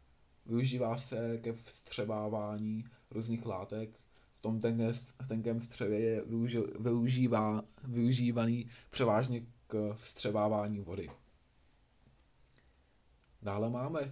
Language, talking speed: Czech, 85 wpm